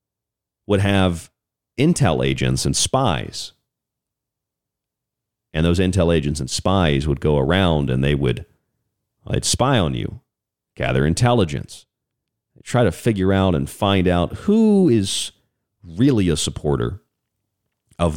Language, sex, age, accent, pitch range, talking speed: English, male, 40-59, American, 80-110 Hz, 130 wpm